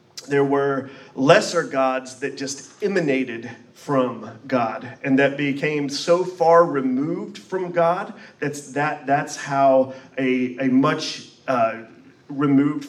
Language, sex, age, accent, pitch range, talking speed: English, male, 40-59, American, 130-150 Hz, 120 wpm